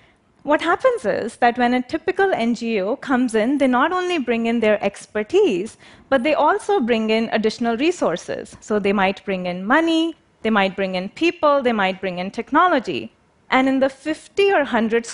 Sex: female